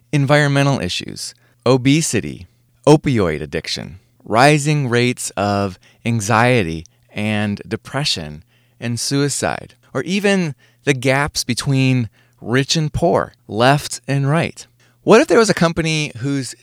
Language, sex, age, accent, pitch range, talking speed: English, male, 30-49, American, 115-145 Hz, 110 wpm